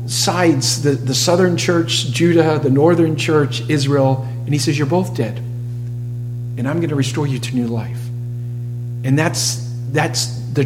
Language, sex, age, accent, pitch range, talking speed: English, male, 50-69, American, 120-155 Hz, 165 wpm